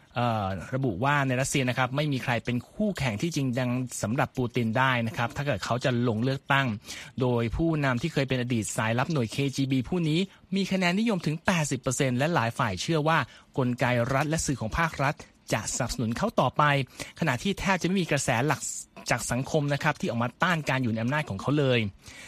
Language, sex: Thai, male